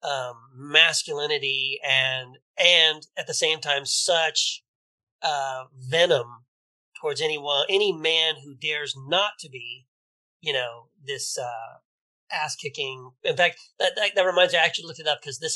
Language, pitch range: English, 135-200 Hz